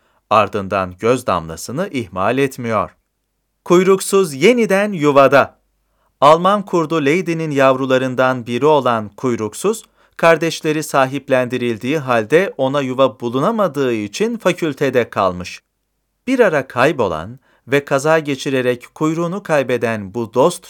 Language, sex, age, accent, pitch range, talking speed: Turkish, male, 40-59, native, 115-150 Hz, 100 wpm